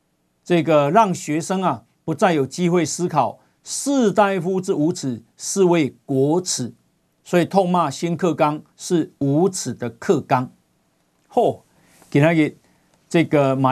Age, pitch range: 50-69, 130-185 Hz